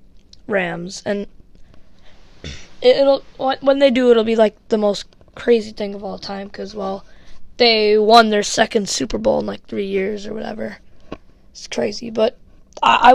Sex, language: female, English